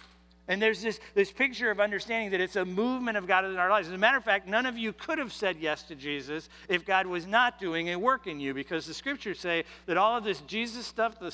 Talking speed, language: 265 wpm, English